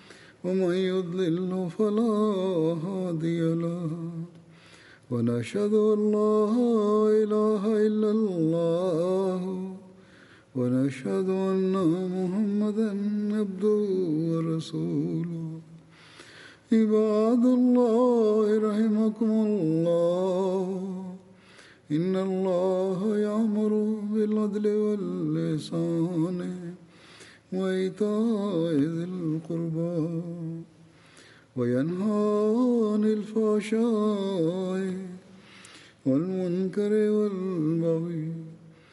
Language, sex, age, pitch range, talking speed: English, male, 50-69, 165-210 Hz, 50 wpm